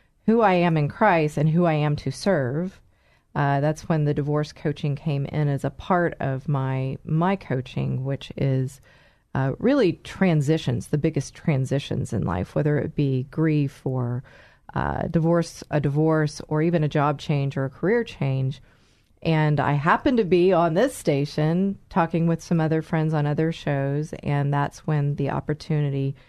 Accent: American